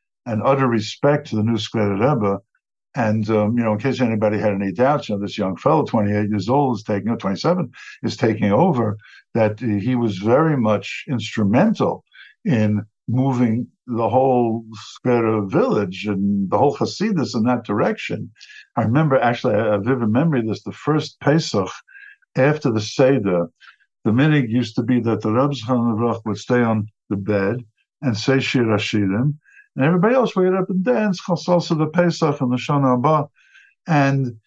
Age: 60-79